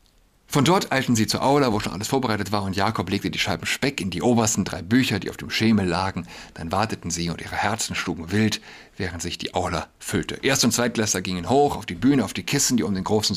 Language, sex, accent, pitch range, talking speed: German, male, German, 95-125 Hz, 245 wpm